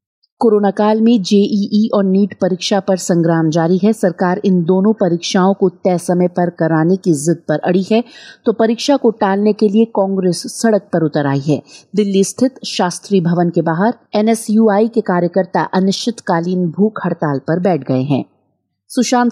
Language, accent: Hindi, native